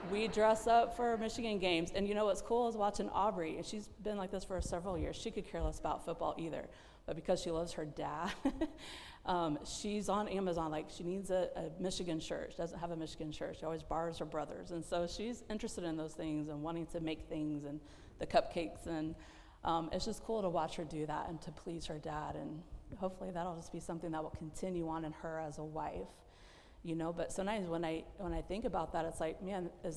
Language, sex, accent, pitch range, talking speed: English, female, American, 160-190 Hz, 235 wpm